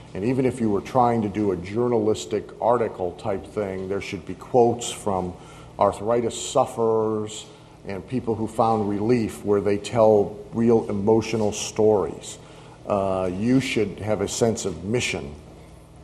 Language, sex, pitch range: English, male, 100-115 Hz